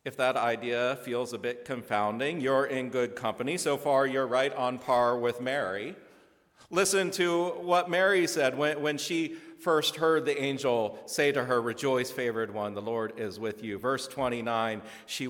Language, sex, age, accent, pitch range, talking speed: English, male, 40-59, American, 125-160 Hz, 175 wpm